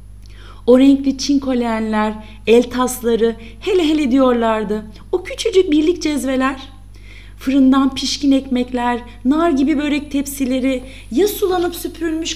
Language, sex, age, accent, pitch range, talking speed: Turkish, female, 30-49, native, 175-280 Hz, 105 wpm